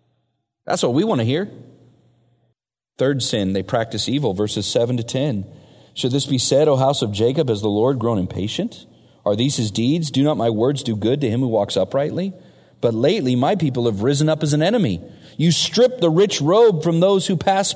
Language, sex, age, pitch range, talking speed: English, male, 40-59, 110-155 Hz, 210 wpm